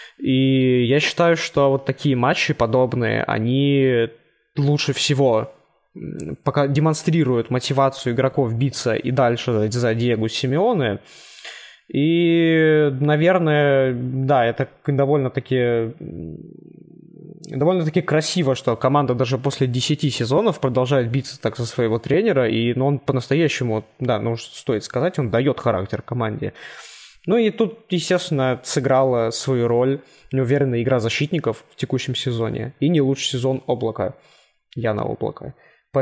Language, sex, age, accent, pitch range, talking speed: Russian, male, 20-39, native, 120-150 Hz, 125 wpm